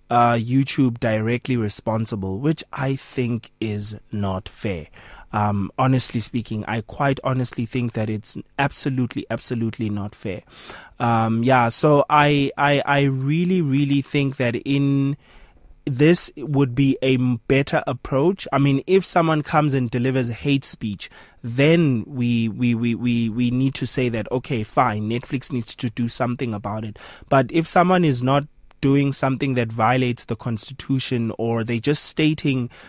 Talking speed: 150 wpm